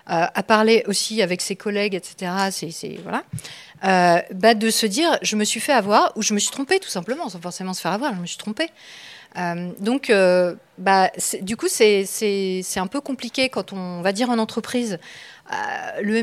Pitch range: 185-240 Hz